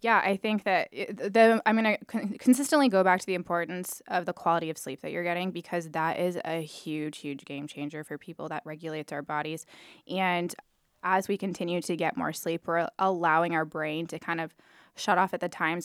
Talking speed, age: 210 wpm, 20-39